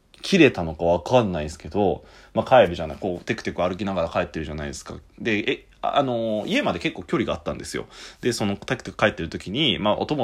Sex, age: male, 30-49